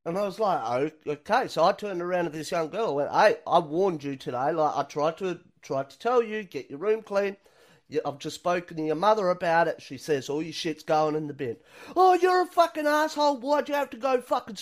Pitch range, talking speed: 155-250 Hz, 250 wpm